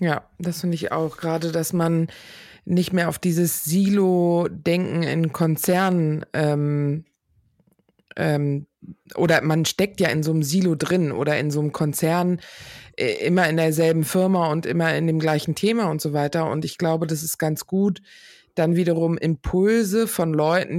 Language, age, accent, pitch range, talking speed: German, 20-39, German, 155-180 Hz, 165 wpm